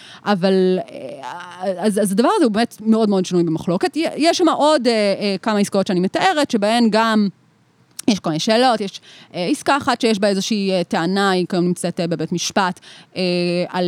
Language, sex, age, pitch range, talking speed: Hebrew, female, 30-49, 180-235 Hz, 180 wpm